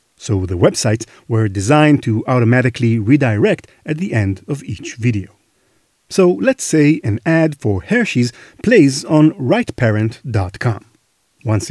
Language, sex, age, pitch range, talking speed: English, male, 40-59, 110-155 Hz, 130 wpm